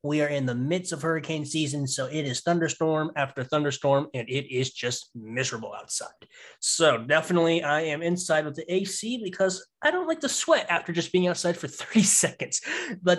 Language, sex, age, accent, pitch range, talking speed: English, male, 20-39, American, 150-195 Hz, 190 wpm